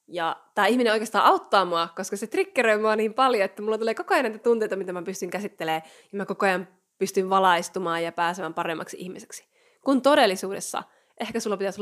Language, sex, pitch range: Finnish, female, 180-235 Hz